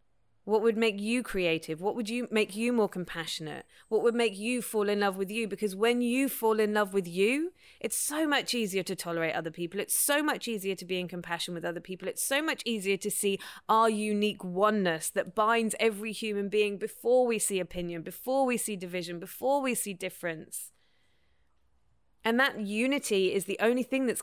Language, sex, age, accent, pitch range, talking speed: English, female, 20-39, British, 165-220 Hz, 205 wpm